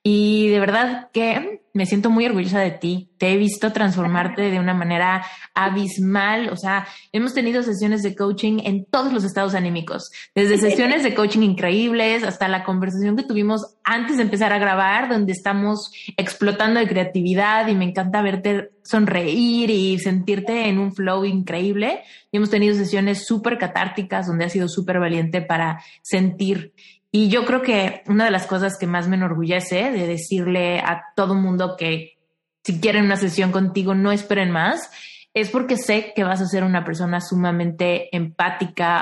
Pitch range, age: 185-215 Hz, 20-39